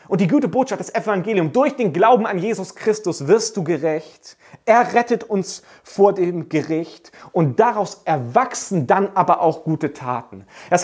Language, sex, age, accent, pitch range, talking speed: German, male, 40-59, German, 160-220 Hz, 165 wpm